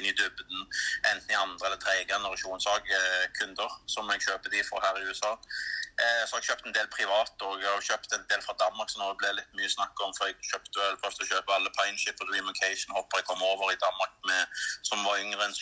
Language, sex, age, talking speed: Danish, male, 30-49, 240 wpm